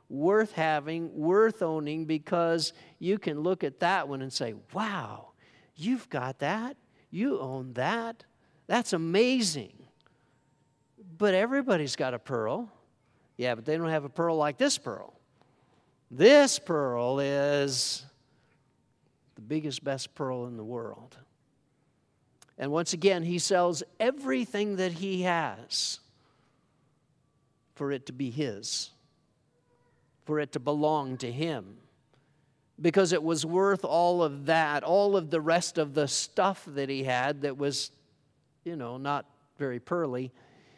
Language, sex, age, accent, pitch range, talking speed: English, male, 50-69, American, 130-165 Hz, 135 wpm